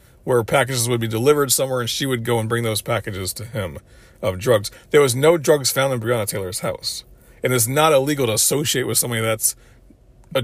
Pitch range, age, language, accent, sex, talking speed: 120-165 Hz, 40-59, English, American, male, 220 wpm